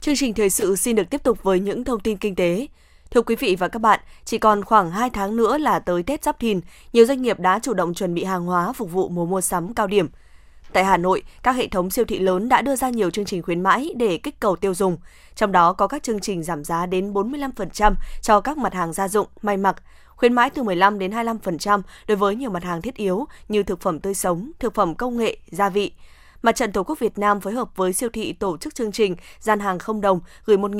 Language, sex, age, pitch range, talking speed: Vietnamese, female, 20-39, 185-225 Hz, 255 wpm